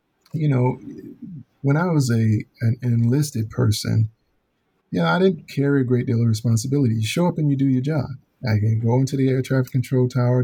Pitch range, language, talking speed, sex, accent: 115-135 Hz, English, 200 wpm, male, American